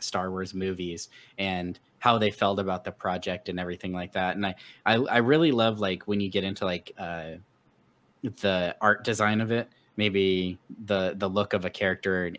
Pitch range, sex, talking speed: 95-110 Hz, male, 195 wpm